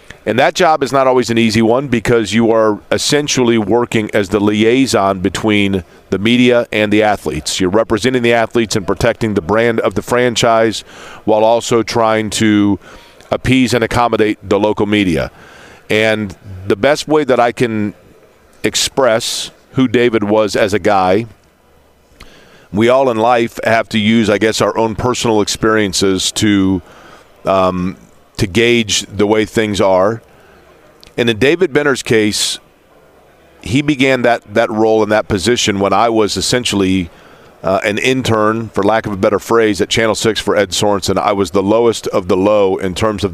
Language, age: English, 40-59